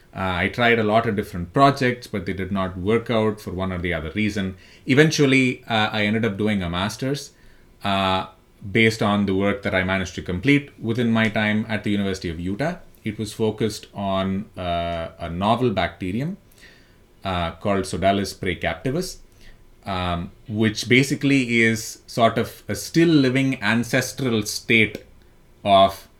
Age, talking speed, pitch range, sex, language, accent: 30-49, 160 wpm, 95-115 Hz, male, English, Indian